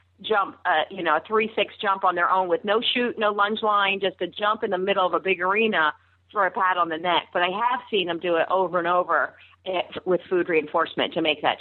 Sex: female